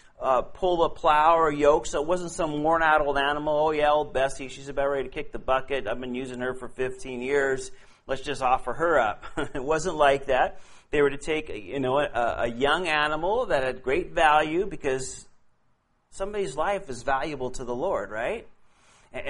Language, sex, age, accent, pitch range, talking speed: Finnish, male, 40-59, American, 130-155 Hz, 200 wpm